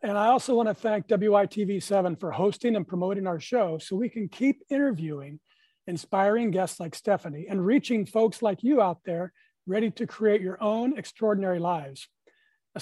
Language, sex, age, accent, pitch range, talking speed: English, male, 40-59, American, 190-230 Hz, 170 wpm